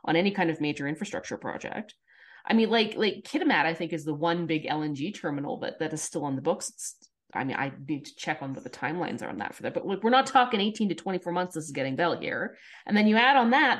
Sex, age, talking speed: female, 30-49, 275 wpm